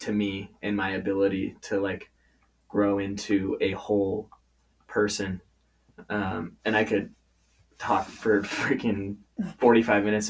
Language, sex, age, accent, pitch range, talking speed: English, male, 20-39, American, 100-110 Hz, 120 wpm